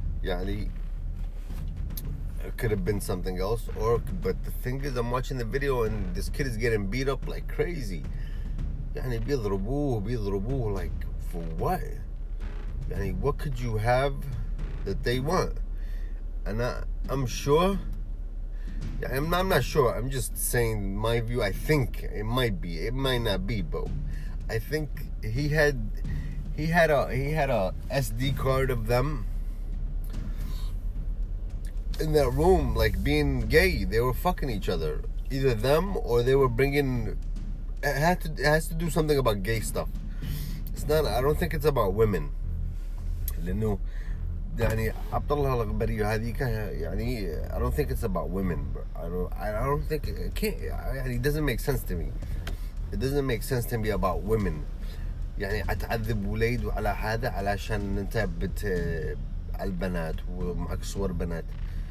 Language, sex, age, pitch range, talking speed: Arabic, male, 30-49, 90-130 Hz, 140 wpm